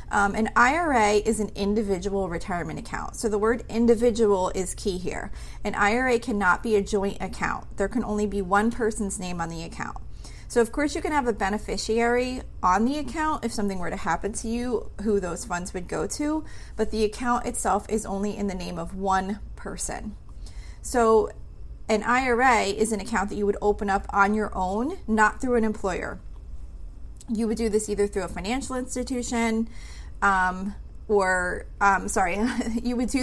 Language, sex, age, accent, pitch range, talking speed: English, female, 30-49, American, 200-235 Hz, 185 wpm